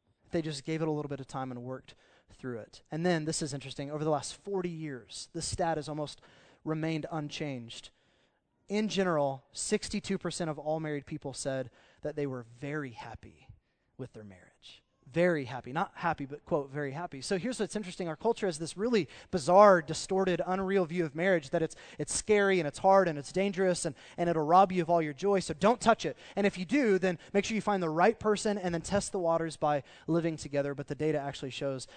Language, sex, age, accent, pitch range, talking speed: English, male, 20-39, American, 145-195 Hz, 220 wpm